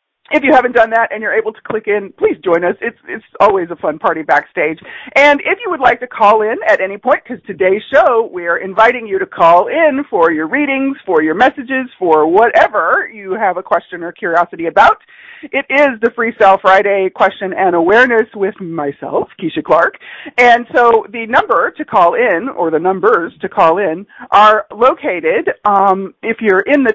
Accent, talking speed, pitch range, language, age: American, 200 wpm, 190-300 Hz, English, 40-59